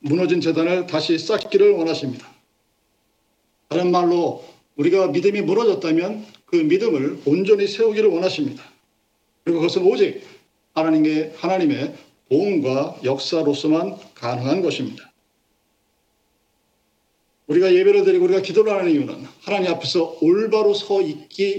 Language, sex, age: Korean, male, 50-69